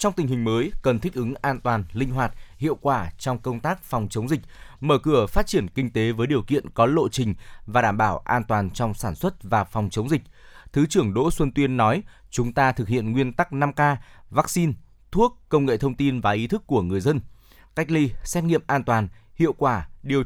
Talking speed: 230 wpm